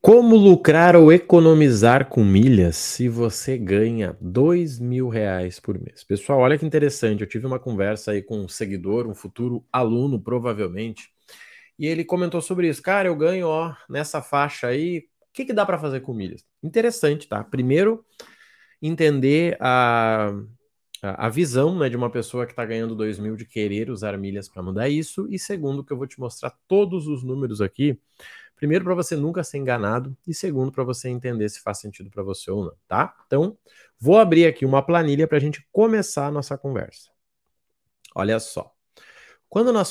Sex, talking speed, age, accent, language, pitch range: male, 180 wpm, 20-39, Brazilian, Portuguese, 115-165 Hz